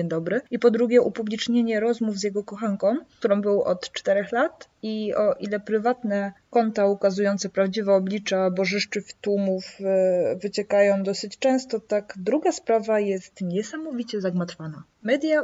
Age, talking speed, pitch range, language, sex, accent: 20-39, 130 wpm, 185-215 Hz, Polish, female, native